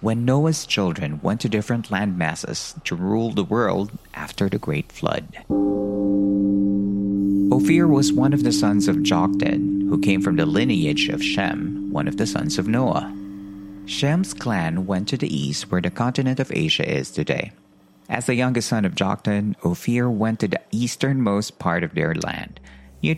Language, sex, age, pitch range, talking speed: Filipino, male, 50-69, 95-135 Hz, 170 wpm